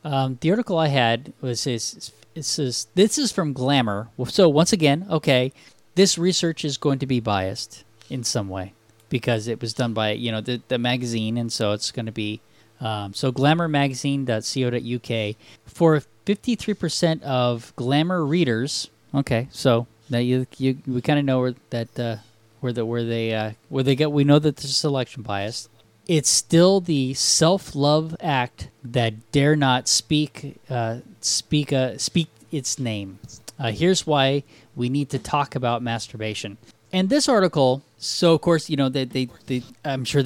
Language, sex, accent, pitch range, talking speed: English, male, American, 115-145 Hz, 175 wpm